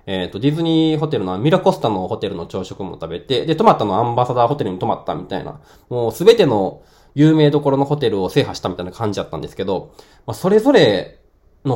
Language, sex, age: Japanese, male, 20-39